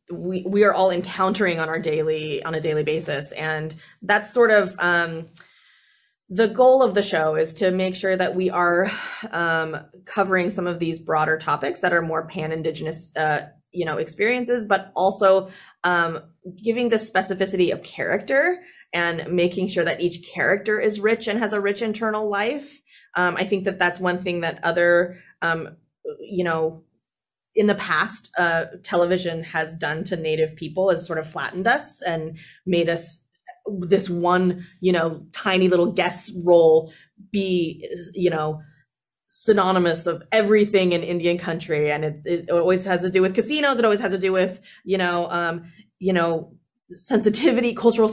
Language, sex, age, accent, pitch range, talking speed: English, female, 20-39, American, 165-200 Hz, 170 wpm